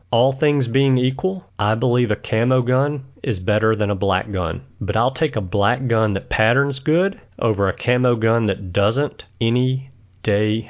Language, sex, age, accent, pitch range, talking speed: English, male, 40-59, American, 105-130 Hz, 180 wpm